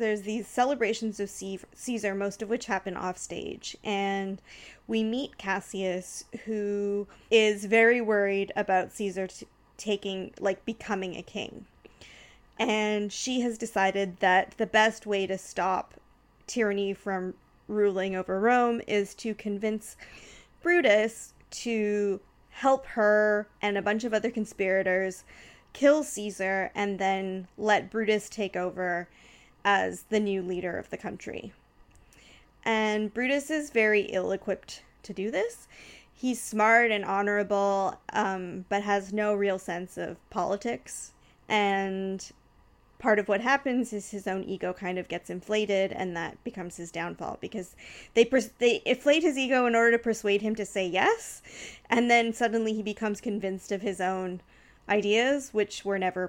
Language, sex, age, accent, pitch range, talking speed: English, female, 20-39, American, 190-225 Hz, 140 wpm